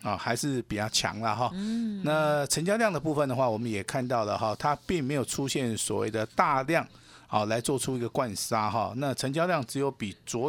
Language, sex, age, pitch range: Chinese, male, 50-69, 115-155 Hz